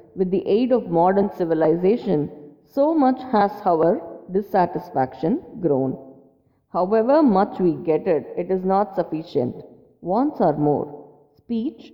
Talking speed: 125 wpm